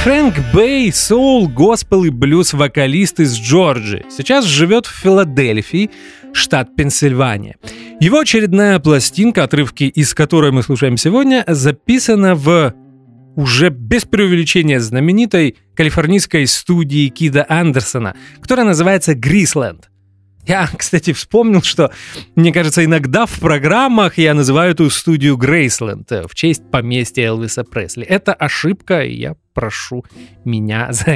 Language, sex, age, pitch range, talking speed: English, male, 30-49, 135-195 Hz, 120 wpm